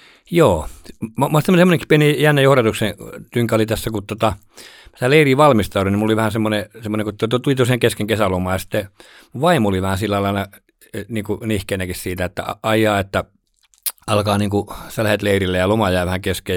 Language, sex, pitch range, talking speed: Finnish, male, 95-110 Hz, 175 wpm